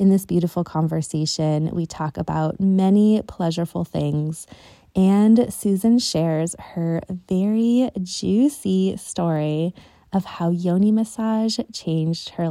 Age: 20-39